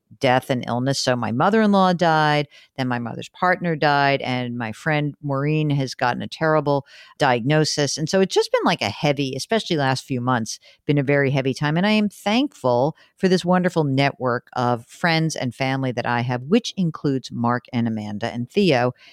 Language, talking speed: English, 200 wpm